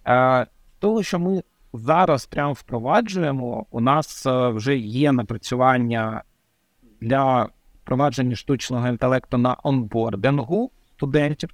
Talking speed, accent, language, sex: 90 wpm, native, Ukrainian, male